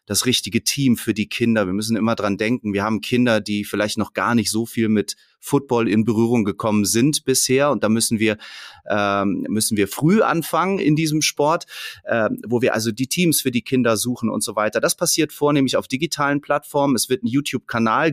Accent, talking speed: German, 210 wpm